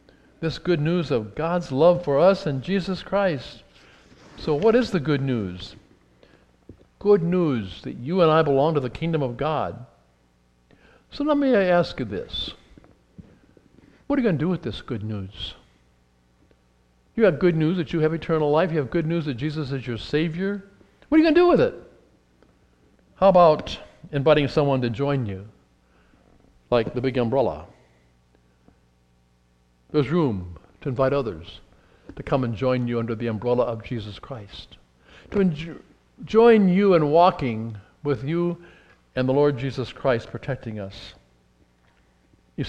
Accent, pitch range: American, 105-170 Hz